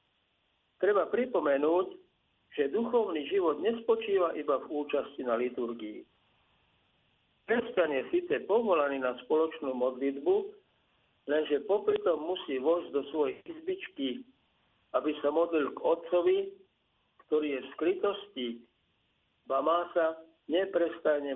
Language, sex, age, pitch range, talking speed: Slovak, male, 50-69, 140-230 Hz, 105 wpm